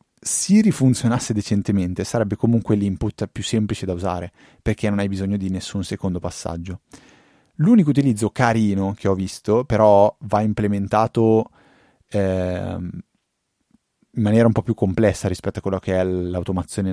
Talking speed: 140 wpm